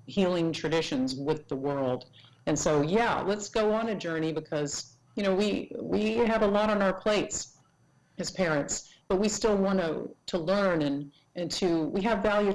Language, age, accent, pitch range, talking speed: English, 50-69, American, 145-180 Hz, 185 wpm